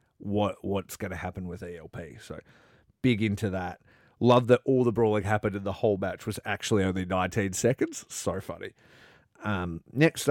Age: 30-49